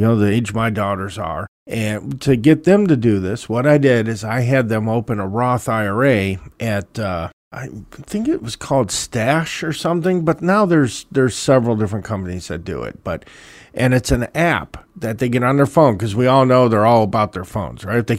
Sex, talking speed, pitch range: male, 225 wpm, 110-145 Hz